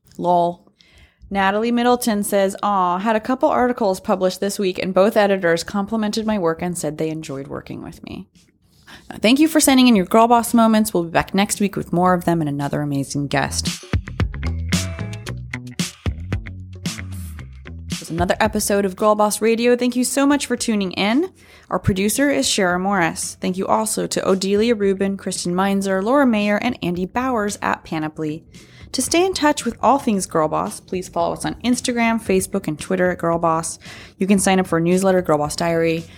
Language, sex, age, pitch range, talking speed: English, female, 20-39, 160-225 Hz, 180 wpm